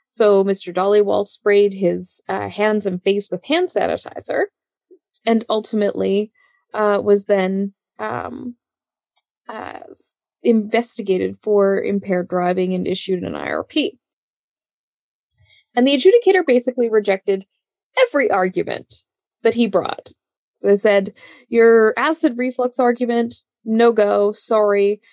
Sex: female